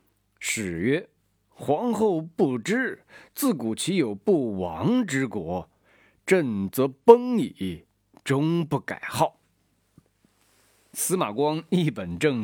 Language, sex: Chinese, male